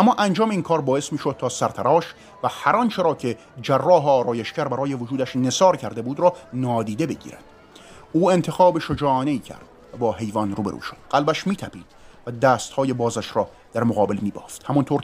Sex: male